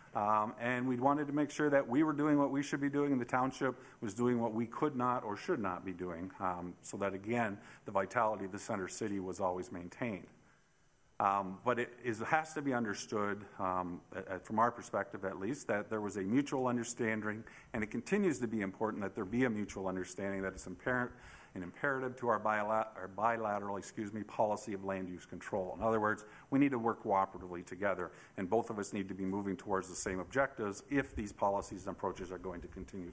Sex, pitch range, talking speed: male, 100-130 Hz, 220 wpm